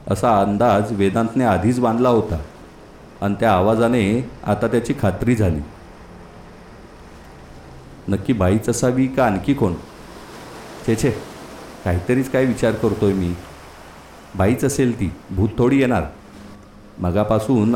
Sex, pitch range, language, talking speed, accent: male, 90-120 Hz, Marathi, 110 wpm, native